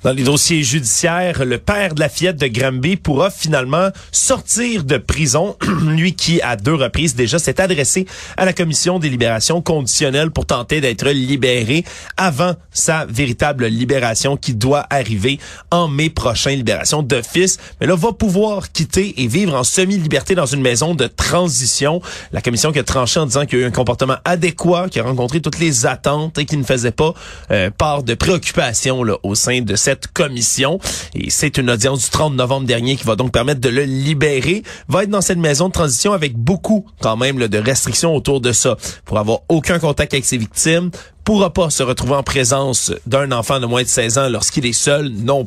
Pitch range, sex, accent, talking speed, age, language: 125-175 Hz, male, Canadian, 200 wpm, 30-49, French